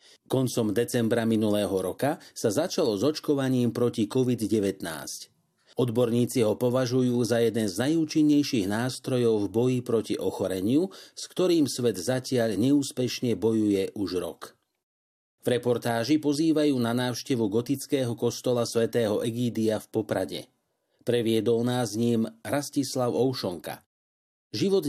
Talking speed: 115 wpm